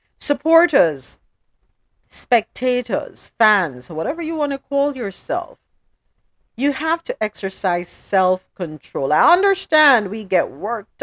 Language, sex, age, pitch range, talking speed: English, female, 50-69, 160-230 Hz, 105 wpm